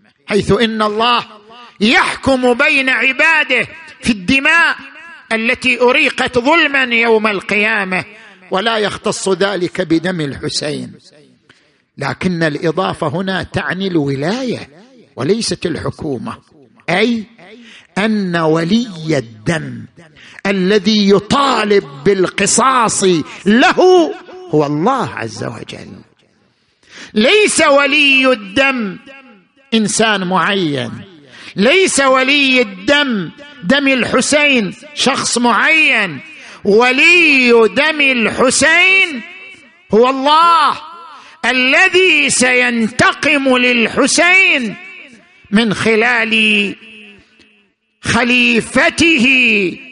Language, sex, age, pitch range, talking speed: Arabic, male, 50-69, 195-265 Hz, 70 wpm